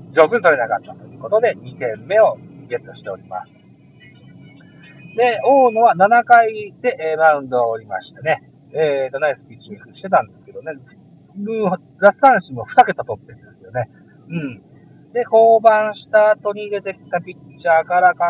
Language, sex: Japanese, male